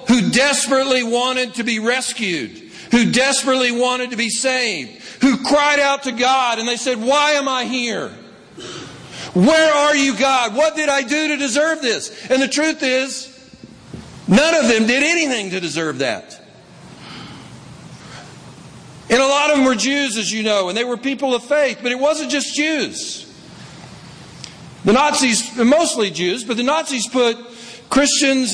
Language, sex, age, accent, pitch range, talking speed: English, male, 50-69, American, 170-260 Hz, 160 wpm